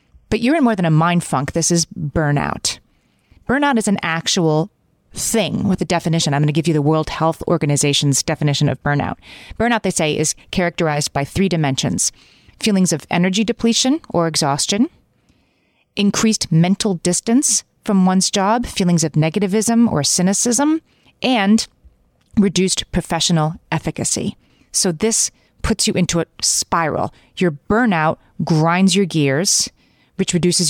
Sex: female